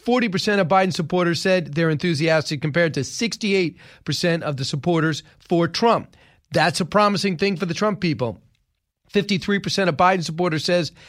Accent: American